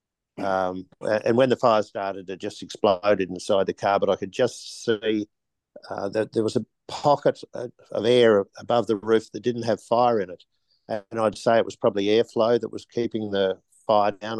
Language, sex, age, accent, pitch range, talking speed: English, male, 50-69, Australian, 100-115 Hz, 195 wpm